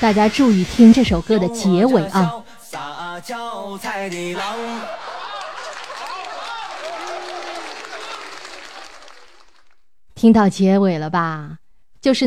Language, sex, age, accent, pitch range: Chinese, female, 20-39, native, 175-230 Hz